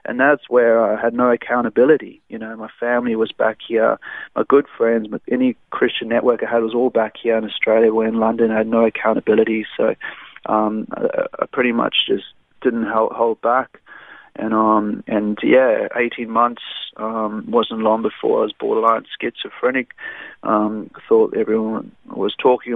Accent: Australian